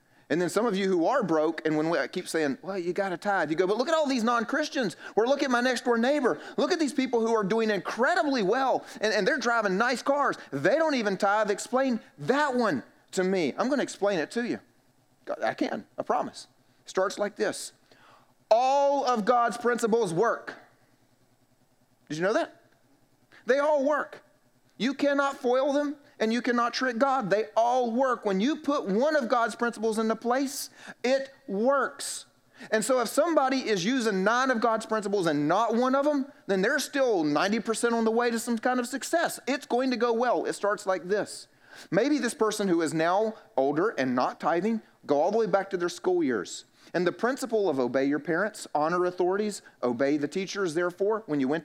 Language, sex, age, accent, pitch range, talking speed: English, male, 30-49, American, 175-260 Hz, 205 wpm